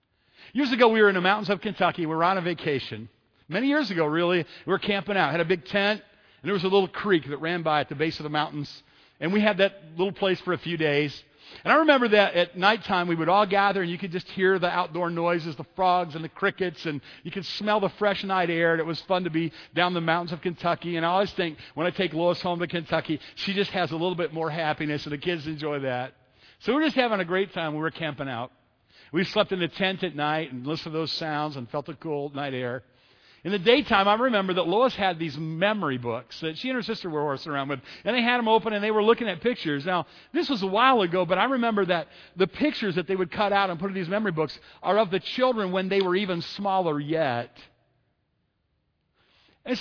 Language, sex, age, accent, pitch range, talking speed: English, male, 50-69, American, 160-200 Hz, 255 wpm